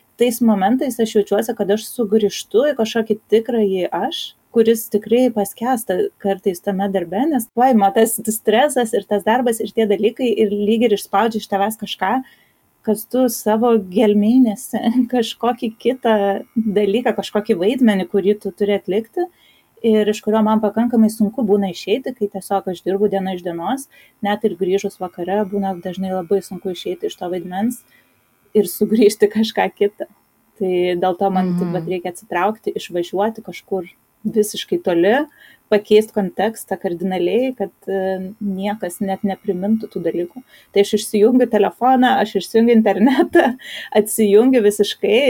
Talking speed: 140 wpm